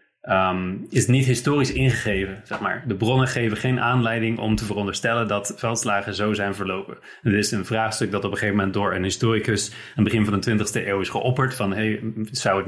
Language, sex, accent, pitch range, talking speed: Dutch, male, Dutch, 100-115 Hz, 215 wpm